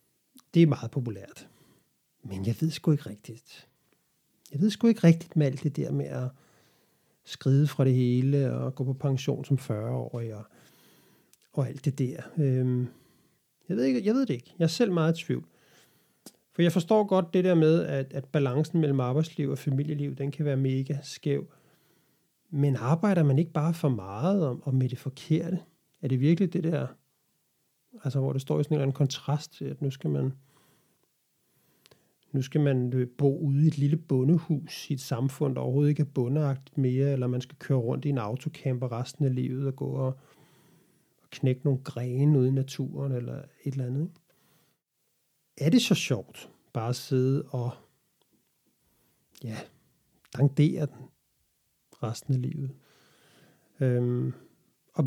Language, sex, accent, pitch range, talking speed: Danish, male, native, 130-155 Hz, 170 wpm